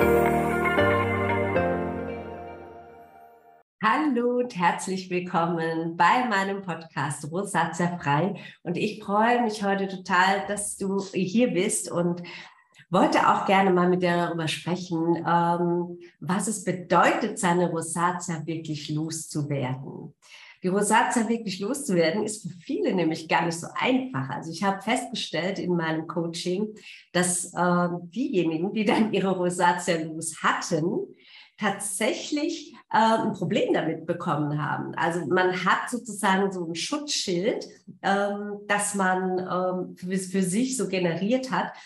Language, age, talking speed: German, 50-69, 125 wpm